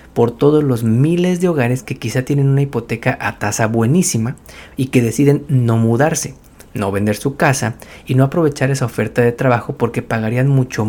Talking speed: 180 wpm